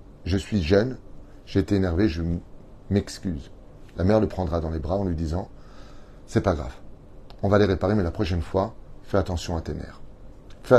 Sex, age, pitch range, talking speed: male, 30-49, 90-110 Hz, 210 wpm